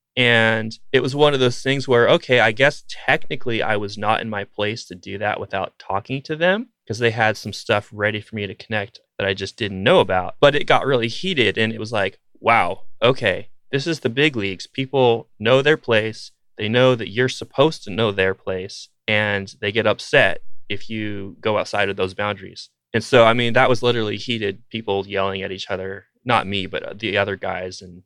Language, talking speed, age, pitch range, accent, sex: English, 215 wpm, 20-39, 100-125 Hz, American, male